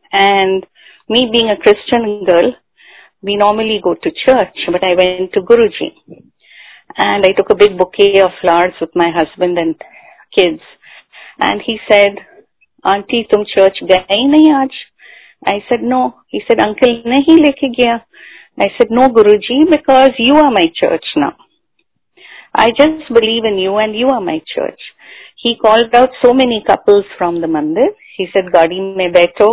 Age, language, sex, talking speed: 30-49, Hindi, female, 165 wpm